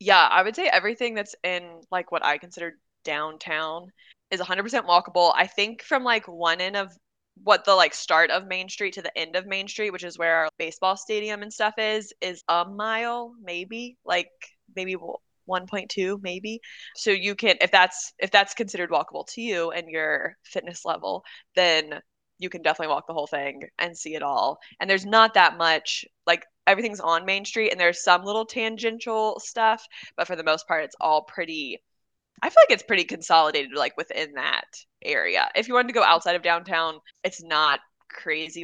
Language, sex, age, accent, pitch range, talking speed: English, female, 20-39, American, 165-220 Hz, 195 wpm